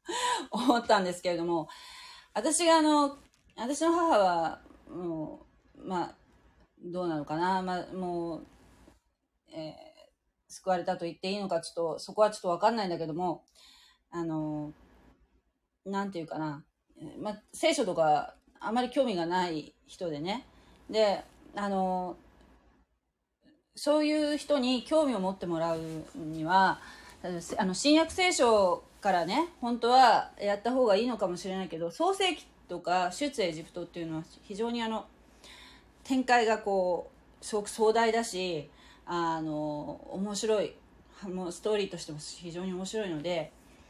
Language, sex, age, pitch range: Japanese, female, 30-49, 170-250 Hz